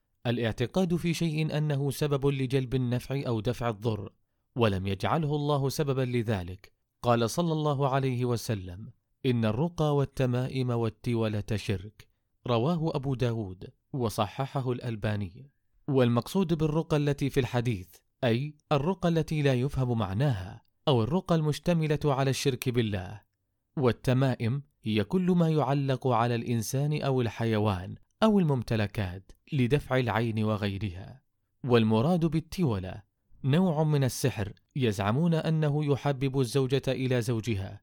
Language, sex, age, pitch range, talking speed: Arabic, male, 30-49, 110-145 Hz, 115 wpm